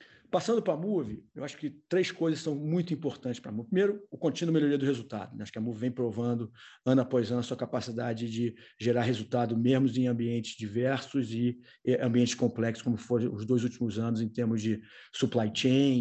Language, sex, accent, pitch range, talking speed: Portuguese, male, Brazilian, 115-135 Hz, 200 wpm